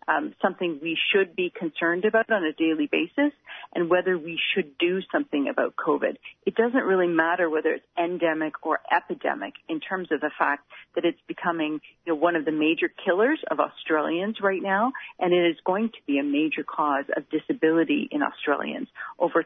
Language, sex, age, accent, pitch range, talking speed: English, female, 40-59, American, 160-240 Hz, 190 wpm